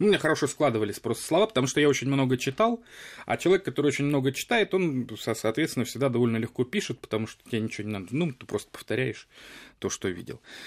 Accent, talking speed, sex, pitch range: native, 210 wpm, male, 100-135 Hz